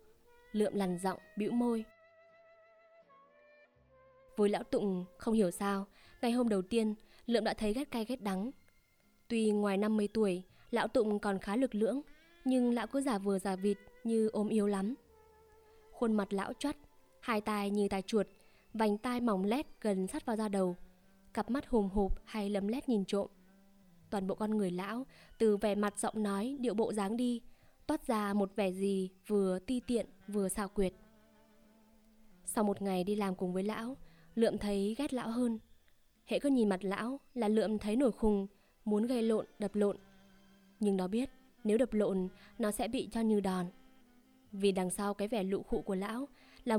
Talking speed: 185 wpm